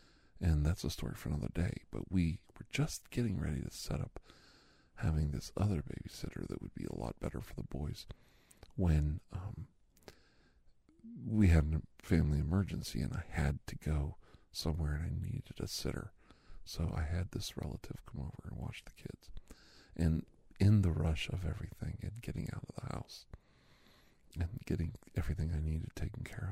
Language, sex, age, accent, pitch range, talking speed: English, male, 50-69, American, 80-100 Hz, 175 wpm